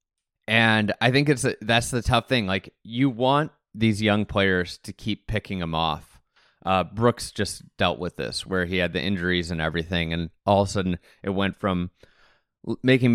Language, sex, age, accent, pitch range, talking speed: English, male, 30-49, American, 90-110 Hz, 185 wpm